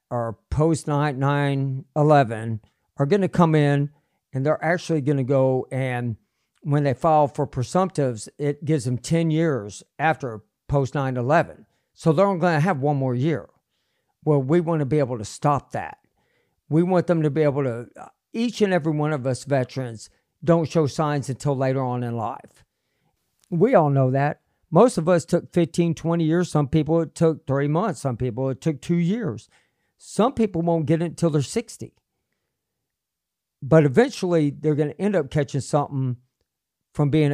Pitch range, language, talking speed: 130-160 Hz, English, 180 wpm